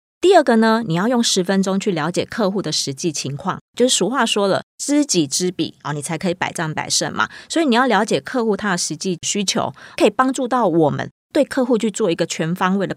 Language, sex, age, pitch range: Chinese, female, 20-39, 170-225 Hz